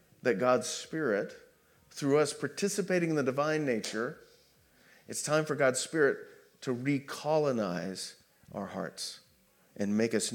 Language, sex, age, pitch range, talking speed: English, male, 40-59, 120-175 Hz, 130 wpm